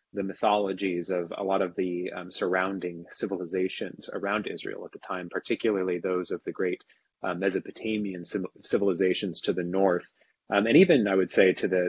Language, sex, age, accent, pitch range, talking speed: English, male, 30-49, American, 90-100 Hz, 175 wpm